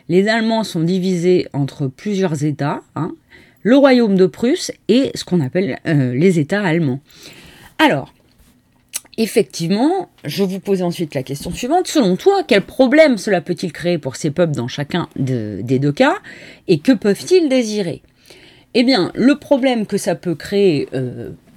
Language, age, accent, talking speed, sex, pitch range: French, 30-49, French, 160 wpm, female, 155-245 Hz